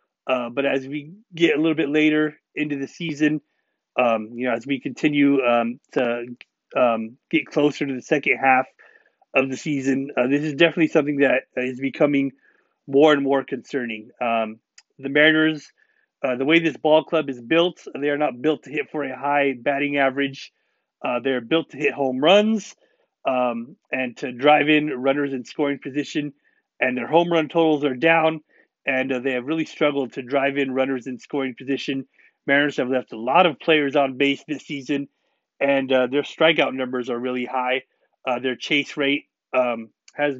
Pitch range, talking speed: 130-155 Hz, 185 wpm